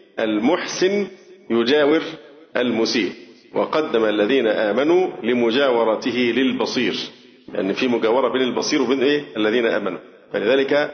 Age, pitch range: 40-59, 125-175 Hz